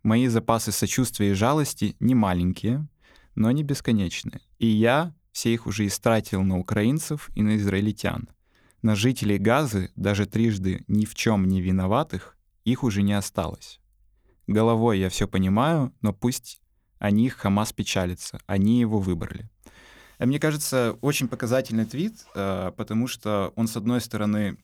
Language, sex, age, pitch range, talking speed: Russian, male, 20-39, 100-120 Hz, 145 wpm